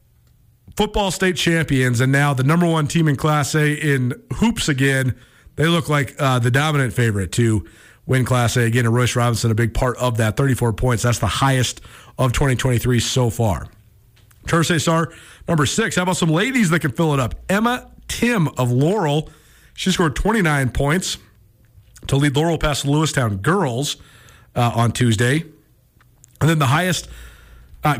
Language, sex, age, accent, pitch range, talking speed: English, male, 40-59, American, 120-160 Hz, 170 wpm